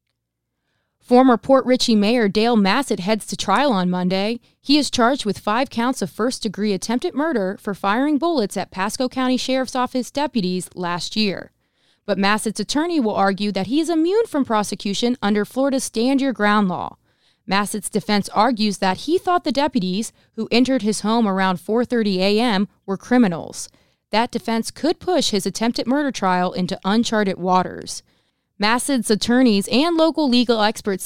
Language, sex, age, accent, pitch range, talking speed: English, female, 20-39, American, 195-255 Hz, 160 wpm